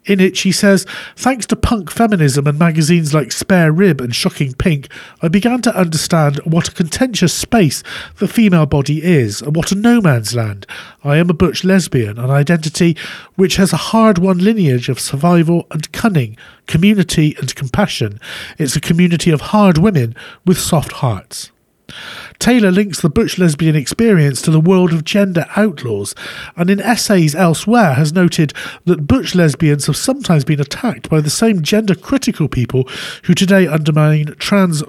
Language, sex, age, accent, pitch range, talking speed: English, male, 40-59, British, 145-195 Hz, 165 wpm